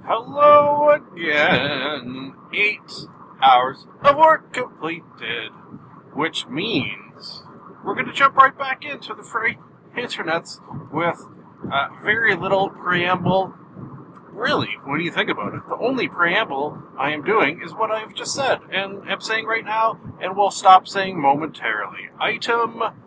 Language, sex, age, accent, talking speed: English, male, 40-59, American, 135 wpm